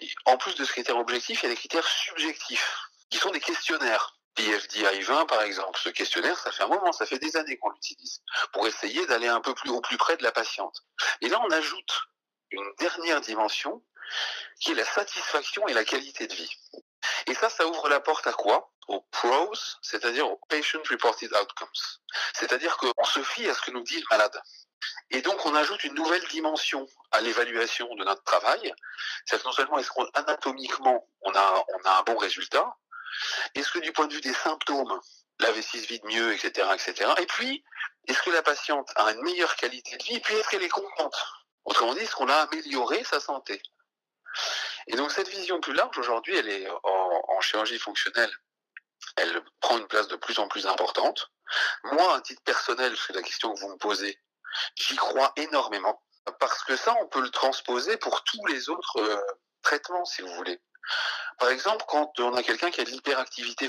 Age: 40-59